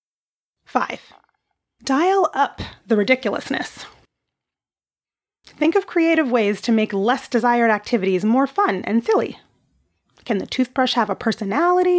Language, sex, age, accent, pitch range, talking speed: English, female, 30-49, American, 215-275 Hz, 120 wpm